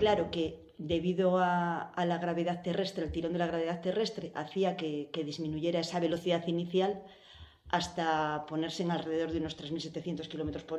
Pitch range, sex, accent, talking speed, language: 165-200 Hz, female, Spanish, 165 wpm, Spanish